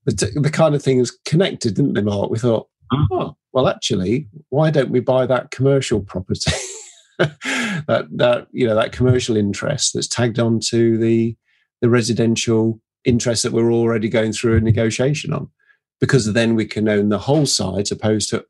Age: 40-59